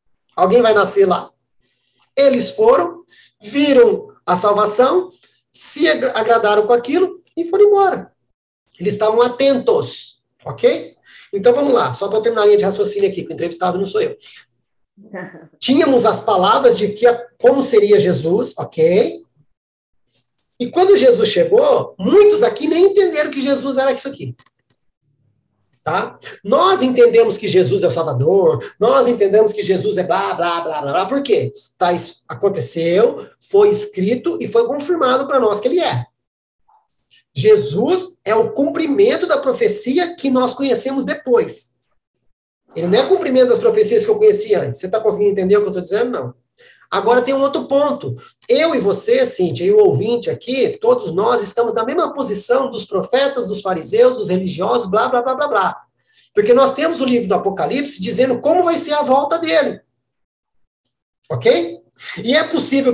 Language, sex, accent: Portuguese, male, Brazilian